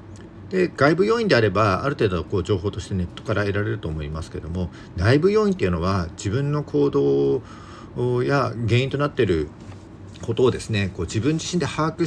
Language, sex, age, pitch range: Japanese, male, 50-69, 90-130 Hz